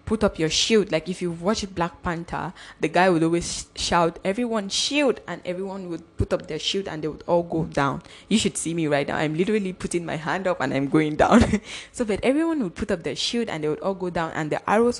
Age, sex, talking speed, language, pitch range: 10-29, female, 250 wpm, English, 165-210 Hz